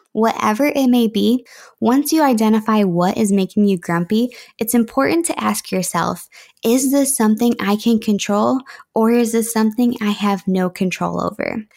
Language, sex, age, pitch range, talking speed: English, female, 20-39, 190-245 Hz, 165 wpm